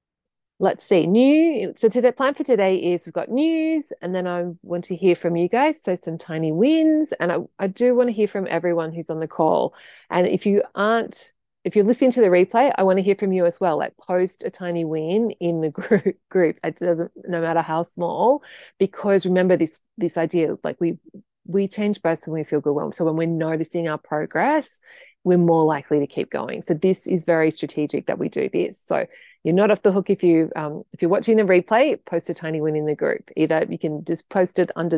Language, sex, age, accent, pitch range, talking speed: English, female, 30-49, Australian, 165-215 Hz, 230 wpm